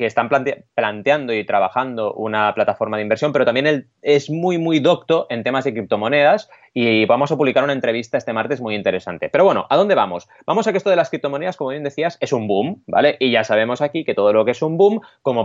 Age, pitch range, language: 20-39, 115-170 Hz, Spanish